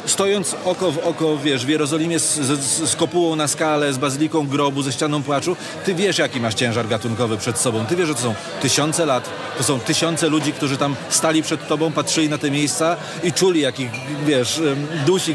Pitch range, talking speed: 135-155 Hz, 205 wpm